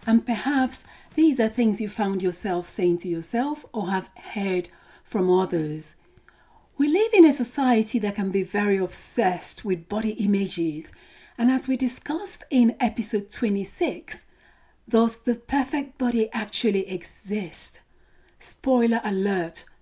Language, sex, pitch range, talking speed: English, female, 195-255 Hz, 135 wpm